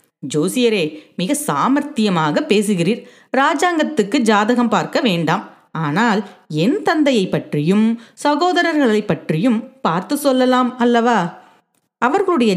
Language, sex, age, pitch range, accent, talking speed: Tamil, female, 30-49, 175-255 Hz, native, 80 wpm